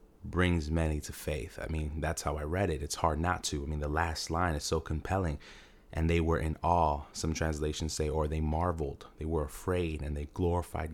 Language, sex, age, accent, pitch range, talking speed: English, male, 30-49, American, 75-90 Hz, 220 wpm